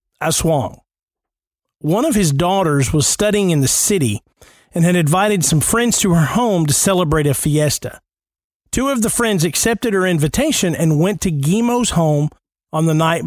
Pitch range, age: 150-200 Hz, 40-59